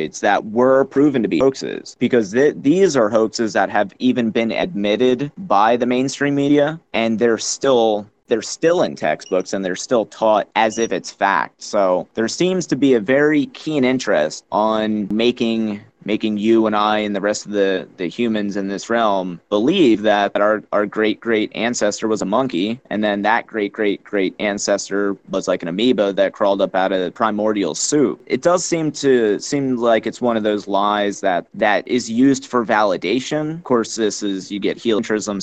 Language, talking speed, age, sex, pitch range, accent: English, 190 wpm, 30-49, male, 100-125 Hz, American